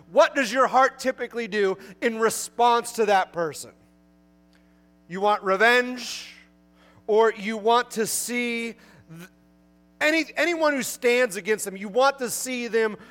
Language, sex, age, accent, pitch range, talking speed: English, male, 30-49, American, 160-230 Hz, 140 wpm